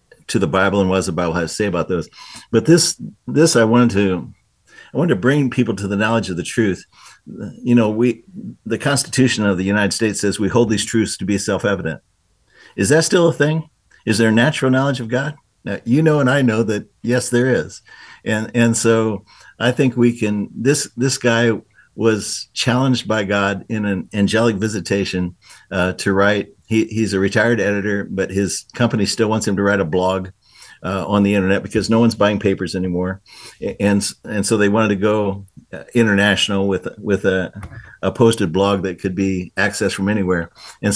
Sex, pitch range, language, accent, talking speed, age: male, 100-120 Hz, English, American, 200 wpm, 50-69